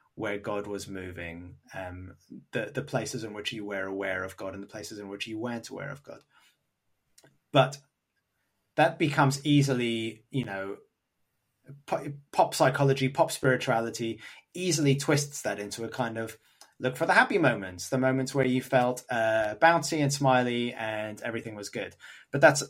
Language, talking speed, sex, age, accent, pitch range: English, 165 wpm, male, 20-39, British, 110-145 Hz